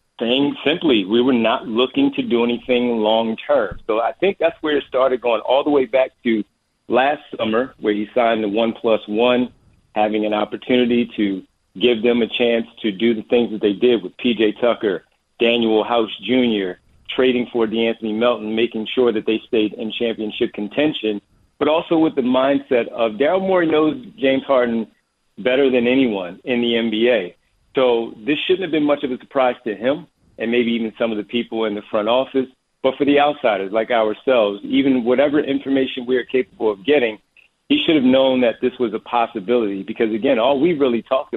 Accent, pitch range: American, 110-135 Hz